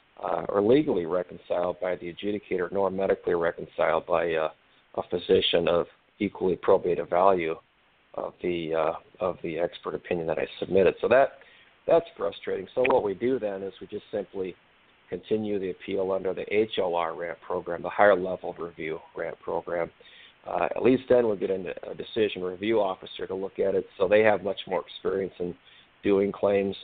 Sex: male